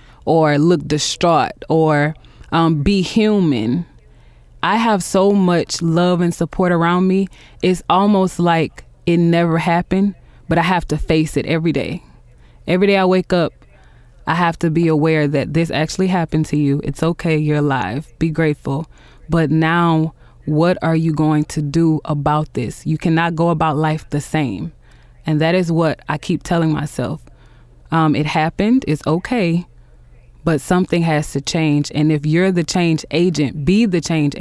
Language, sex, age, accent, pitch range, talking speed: English, female, 20-39, American, 150-175 Hz, 165 wpm